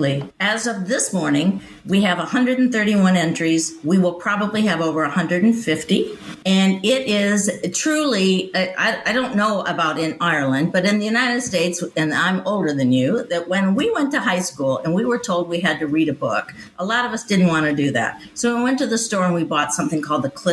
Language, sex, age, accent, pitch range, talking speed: English, female, 50-69, American, 165-215 Hz, 215 wpm